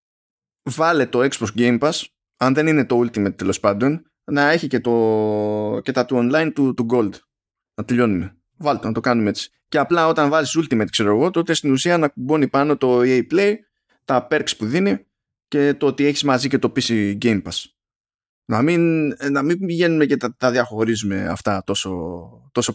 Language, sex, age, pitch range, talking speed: Greek, male, 20-39, 115-160 Hz, 190 wpm